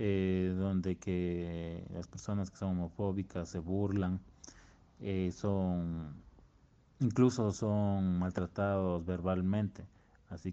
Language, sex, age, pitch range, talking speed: Italian, male, 30-49, 90-105 Hz, 95 wpm